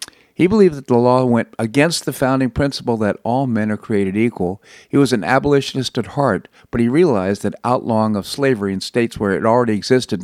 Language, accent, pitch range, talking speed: English, American, 105-130 Hz, 205 wpm